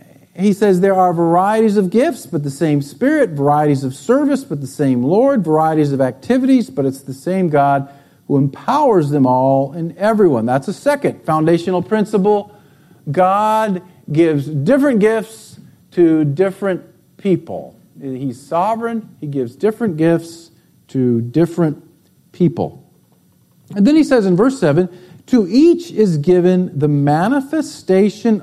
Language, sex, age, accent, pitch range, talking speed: English, male, 50-69, American, 150-210 Hz, 140 wpm